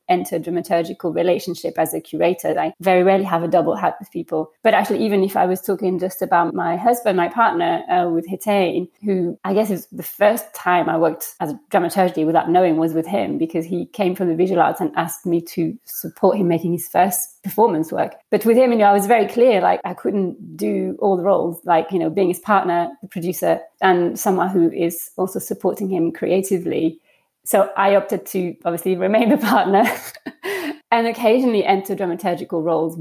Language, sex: English, female